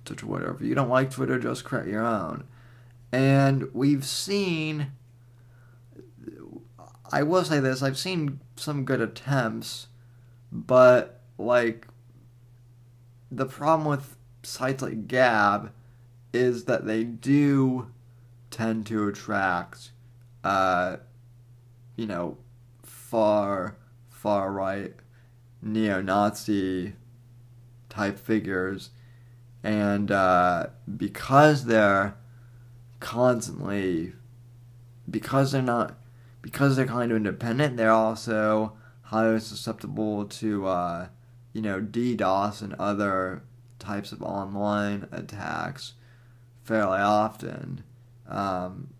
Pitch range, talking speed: 105-120 Hz, 95 wpm